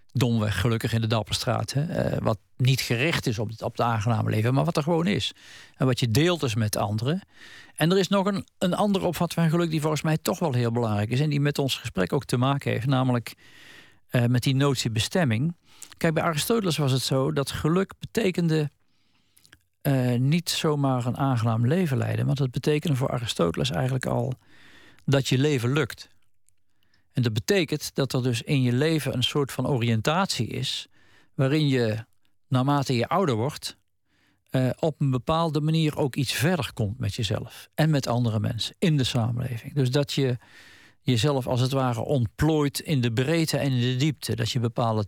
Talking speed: 190 wpm